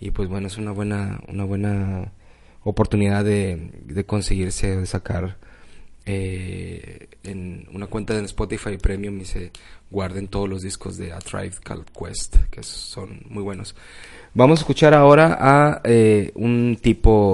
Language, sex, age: Spanish, male, 20-39